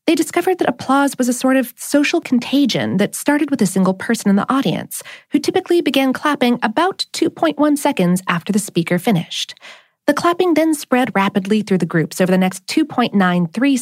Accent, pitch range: American, 185-290 Hz